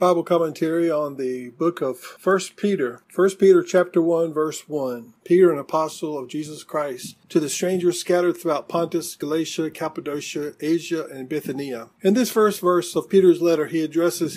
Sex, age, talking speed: male, 40-59, 165 wpm